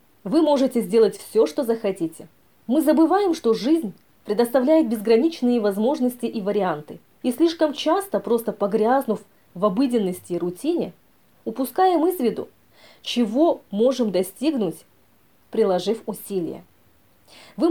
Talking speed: 110 wpm